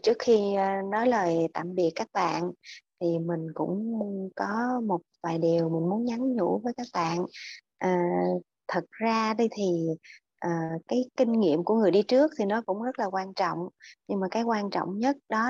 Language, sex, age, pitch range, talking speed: Vietnamese, female, 20-39, 175-230 Hz, 180 wpm